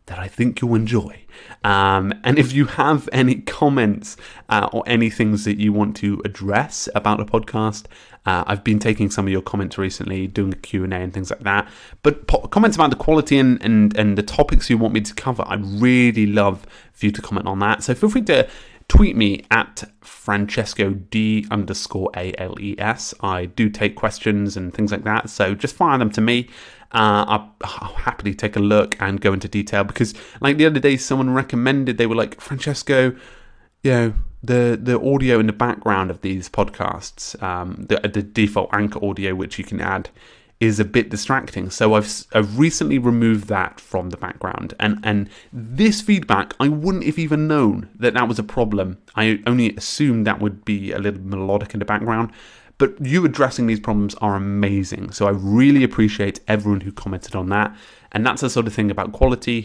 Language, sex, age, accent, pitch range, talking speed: English, male, 30-49, British, 100-125 Hz, 200 wpm